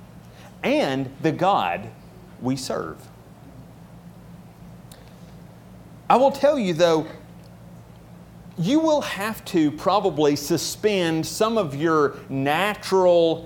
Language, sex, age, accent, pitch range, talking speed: English, male, 40-59, American, 130-190 Hz, 90 wpm